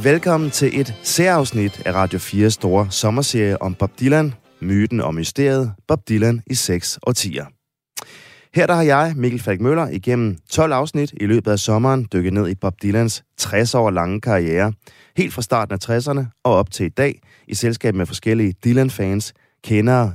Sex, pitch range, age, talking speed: male, 100-140 Hz, 30-49, 175 wpm